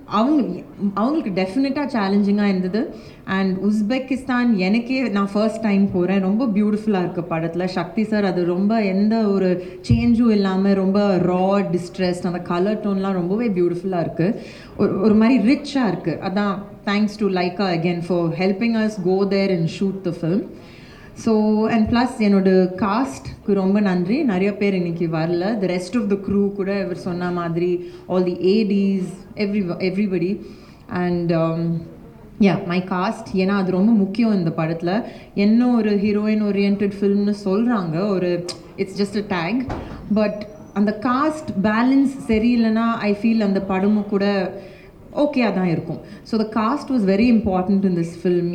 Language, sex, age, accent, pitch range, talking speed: Tamil, female, 30-49, native, 180-215 Hz, 155 wpm